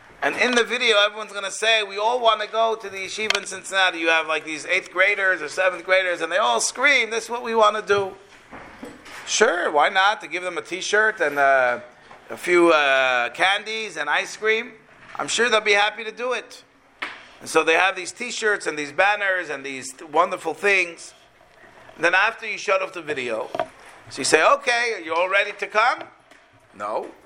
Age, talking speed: 40-59, 210 wpm